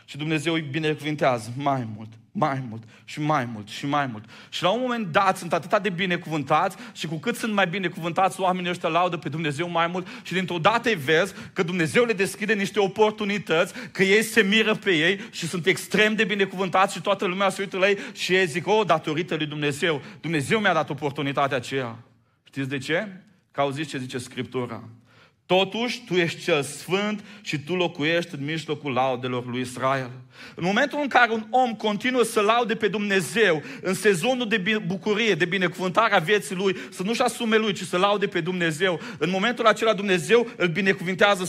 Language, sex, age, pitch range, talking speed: Romanian, male, 30-49, 160-210 Hz, 190 wpm